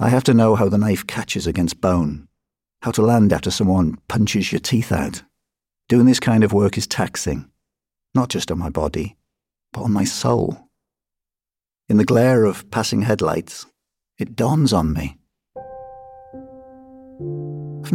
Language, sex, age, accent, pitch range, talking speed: English, male, 50-69, British, 90-125 Hz, 155 wpm